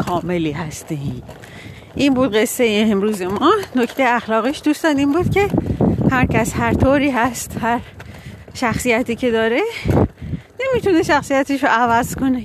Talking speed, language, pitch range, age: 135 wpm, Persian, 170-260 Hz, 40-59